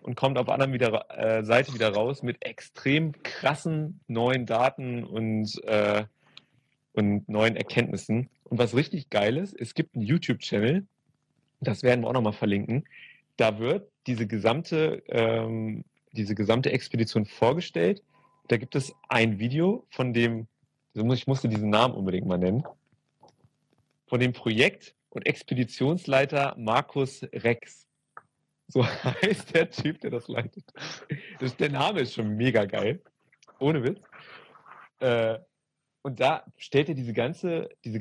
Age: 30-49